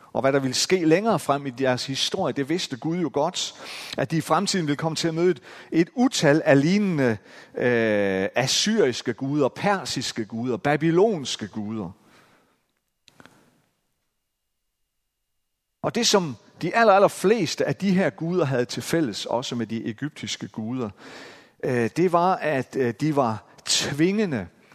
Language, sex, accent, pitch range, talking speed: Danish, male, native, 125-190 Hz, 150 wpm